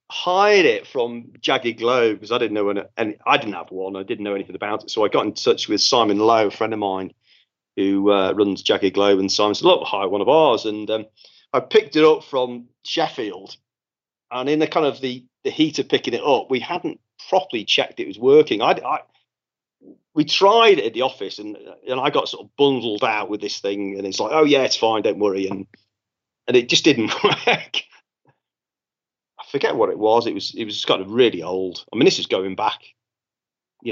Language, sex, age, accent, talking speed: English, male, 40-59, British, 225 wpm